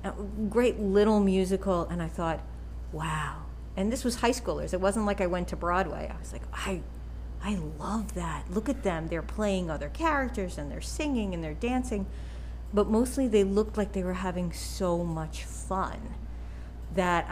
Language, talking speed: English, 175 wpm